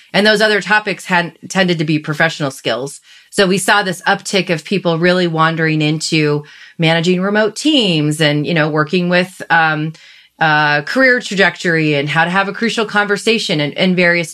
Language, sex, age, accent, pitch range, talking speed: English, female, 30-49, American, 160-200 Hz, 175 wpm